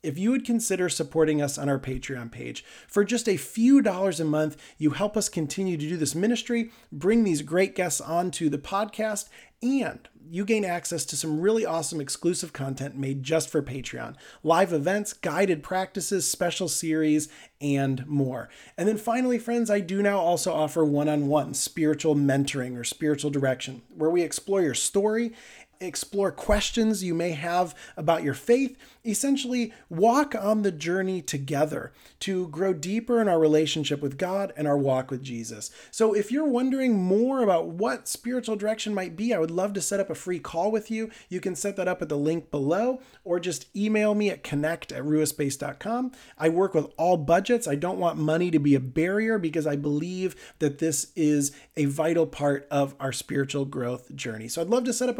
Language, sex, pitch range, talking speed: English, male, 150-210 Hz, 190 wpm